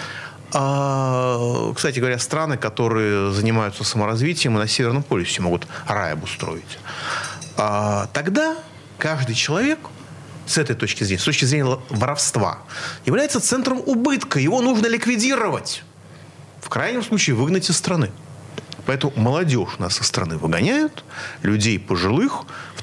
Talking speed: 120 wpm